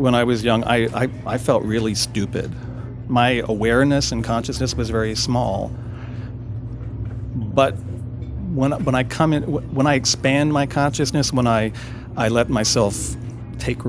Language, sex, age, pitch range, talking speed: English, male, 40-59, 115-130 Hz, 145 wpm